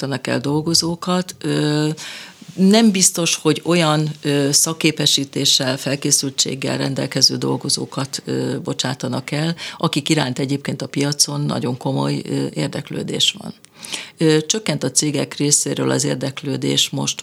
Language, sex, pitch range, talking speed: Hungarian, female, 130-165 Hz, 95 wpm